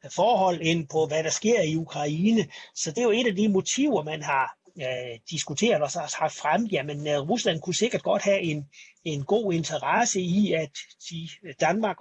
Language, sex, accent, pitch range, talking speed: Danish, male, native, 145-190 Hz, 185 wpm